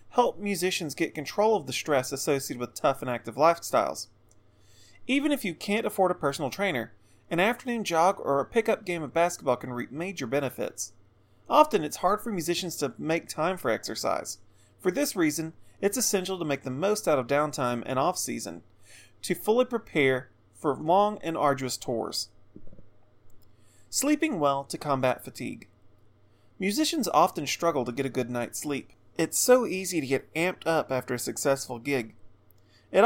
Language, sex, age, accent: English, male, 30-49, American